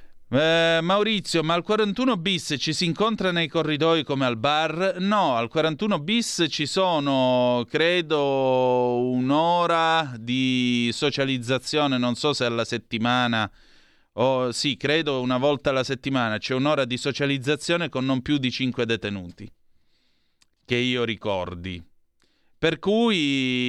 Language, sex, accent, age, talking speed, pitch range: Italian, male, native, 30-49, 130 wpm, 115-145 Hz